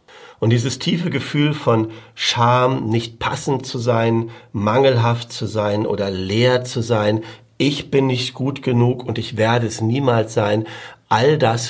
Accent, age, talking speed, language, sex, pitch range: German, 50-69, 155 wpm, German, male, 110-135 Hz